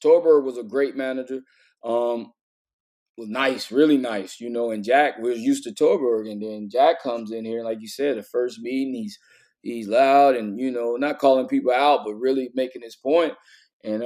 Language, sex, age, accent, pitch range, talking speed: English, male, 20-39, American, 120-150 Hz, 200 wpm